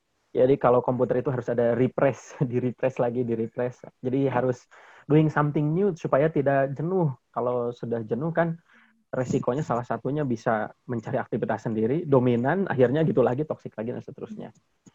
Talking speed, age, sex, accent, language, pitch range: 150 wpm, 20-39, male, native, Indonesian, 120-155 Hz